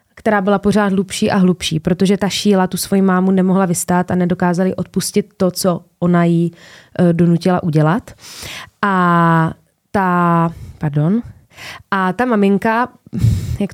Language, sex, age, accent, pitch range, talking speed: Czech, female, 20-39, native, 180-225 Hz, 130 wpm